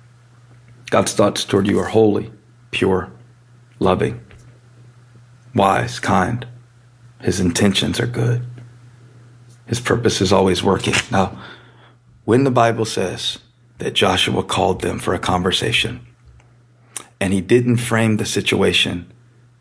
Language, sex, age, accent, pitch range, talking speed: English, male, 40-59, American, 110-120 Hz, 115 wpm